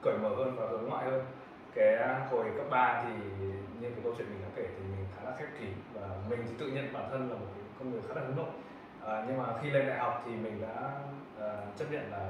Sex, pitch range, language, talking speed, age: male, 100-130 Hz, Vietnamese, 265 wpm, 20-39